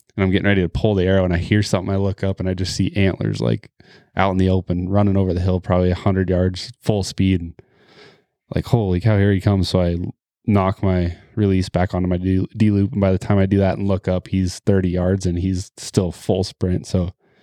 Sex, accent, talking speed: male, American, 240 wpm